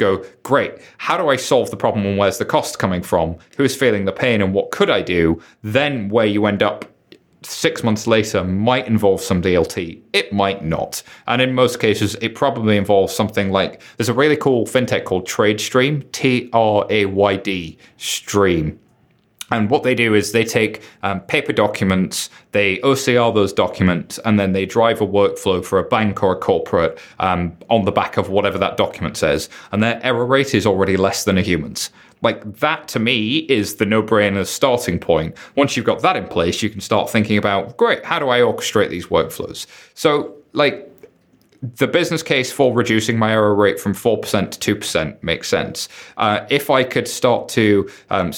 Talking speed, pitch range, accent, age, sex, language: 190 wpm, 100-115 Hz, British, 30-49, male, English